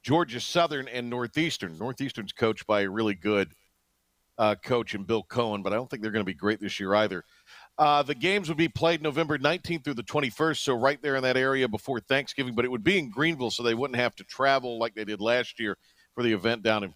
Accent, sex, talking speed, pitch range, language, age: American, male, 240 wpm, 105-145 Hz, English, 50-69